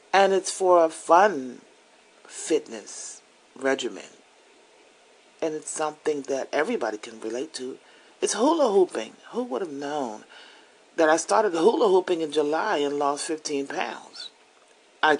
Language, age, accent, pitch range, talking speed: English, 40-59, American, 140-220 Hz, 135 wpm